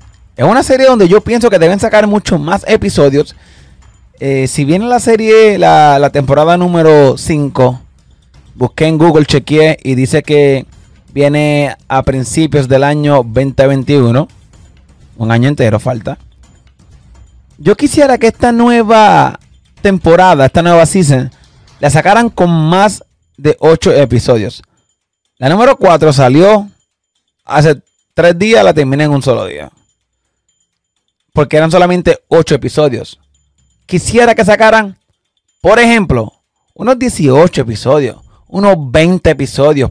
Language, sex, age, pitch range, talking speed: English, male, 30-49, 130-180 Hz, 125 wpm